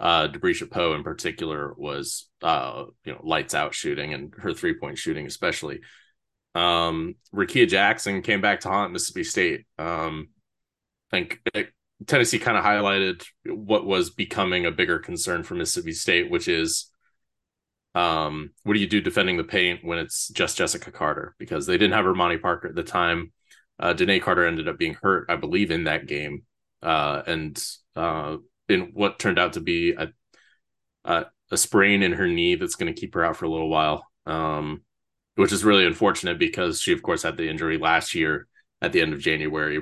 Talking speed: 185 wpm